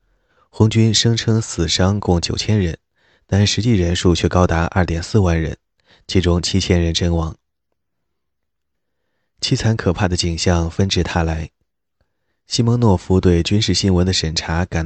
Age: 20-39